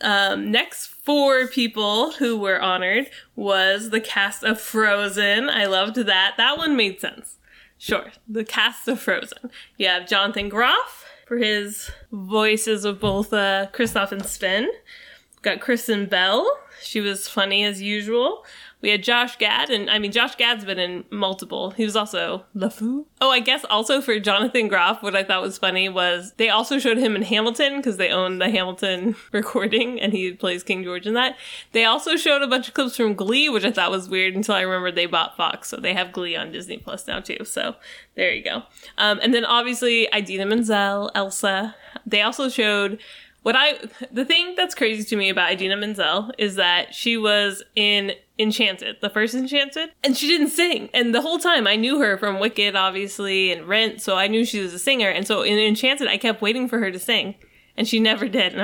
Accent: American